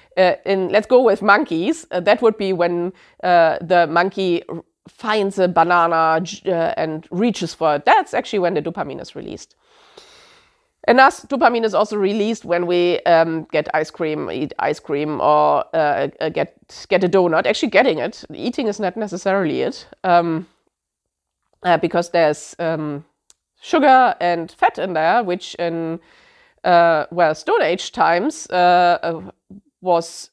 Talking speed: 160 wpm